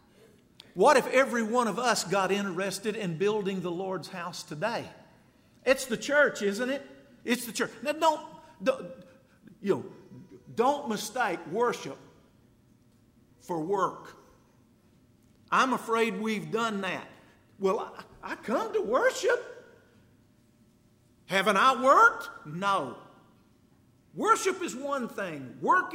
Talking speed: 120 wpm